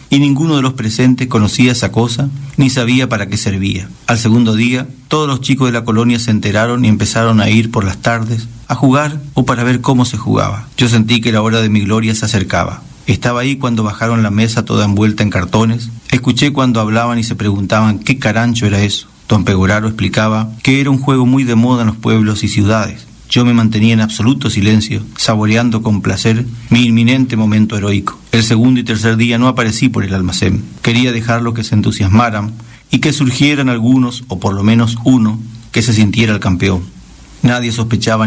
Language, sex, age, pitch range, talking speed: Spanish, male, 40-59, 110-120 Hz, 200 wpm